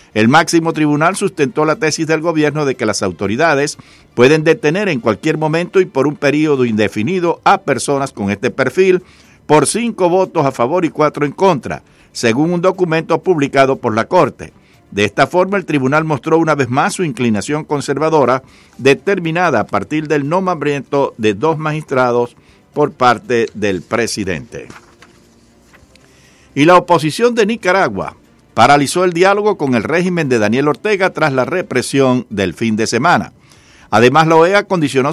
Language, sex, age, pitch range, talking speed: English, male, 60-79, 125-165 Hz, 155 wpm